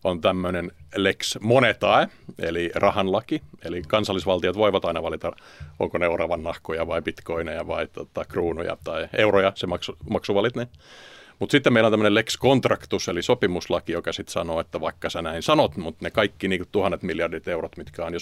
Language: Finnish